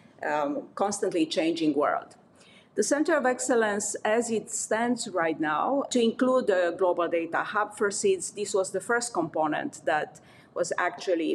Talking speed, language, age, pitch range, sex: 155 wpm, English, 30-49, 170-210 Hz, female